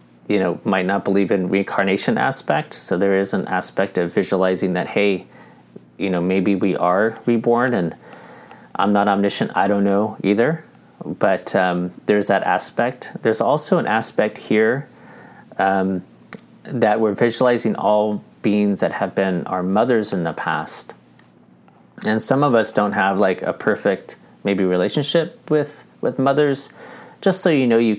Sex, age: male, 30-49